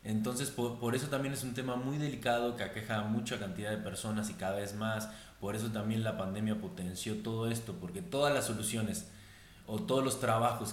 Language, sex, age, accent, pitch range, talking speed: Spanish, male, 20-39, Mexican, 100-120 Hz, 205 wpm